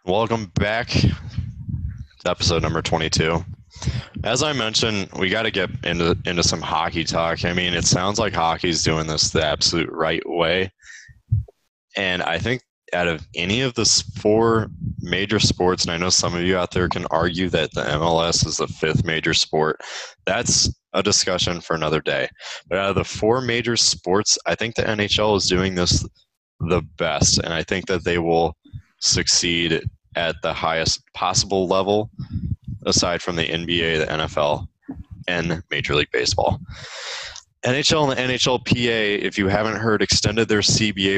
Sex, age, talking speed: male, 20-39, 170 wpm